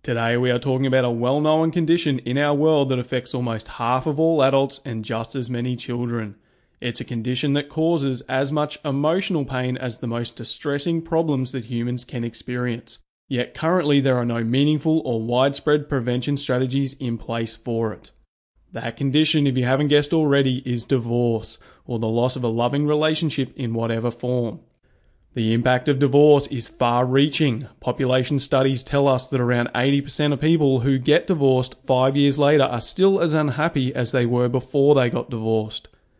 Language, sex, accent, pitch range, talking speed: English, male, Australian, 120-145 Hz, 175 wpm